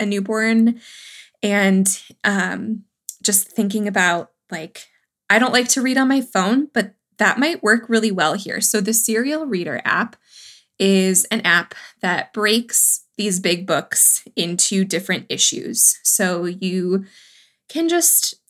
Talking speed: 140 wpm